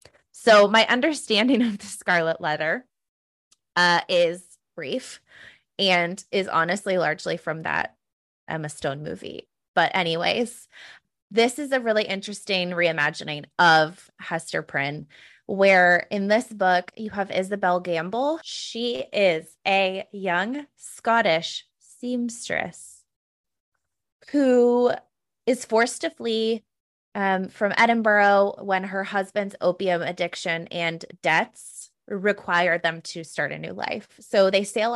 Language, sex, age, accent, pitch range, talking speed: English, female, 20-39, American, 175-225 Hz, 120 wpm